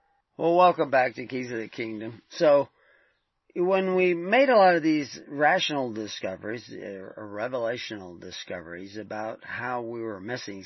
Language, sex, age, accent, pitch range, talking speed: English, male, 40-59, American, 110-140 Hz, 150 wpm